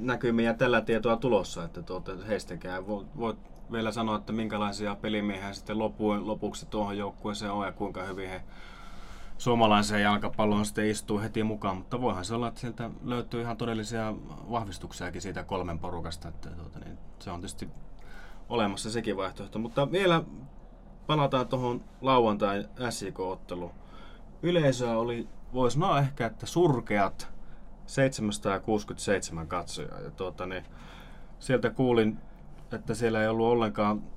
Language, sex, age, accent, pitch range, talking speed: Finnish, male, 20-39, native, 90-115 Hz, 130 wpm